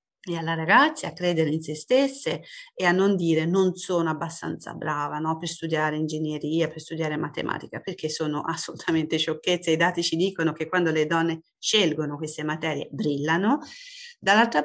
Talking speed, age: 165 wpm, 40-59